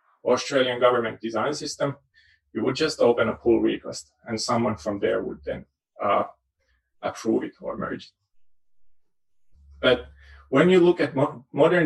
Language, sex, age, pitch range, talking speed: English, male, 30-49, 110-145 Hz, 145 wpm